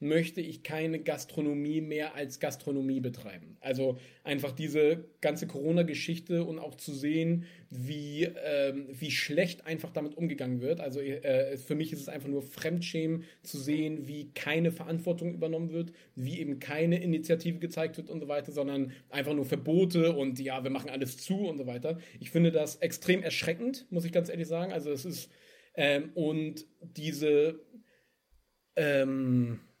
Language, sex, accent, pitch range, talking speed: German, male, German, 150-180 Hz, 160 wpm